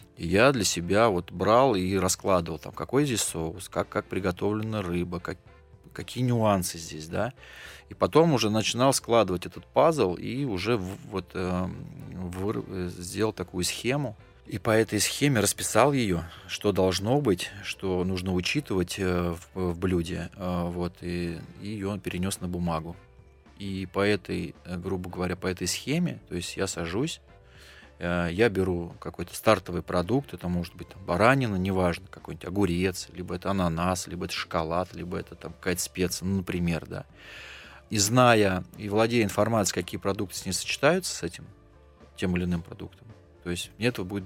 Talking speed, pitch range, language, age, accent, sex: 150 wpm, 90-105 Hz, Russian, 20-39, native, male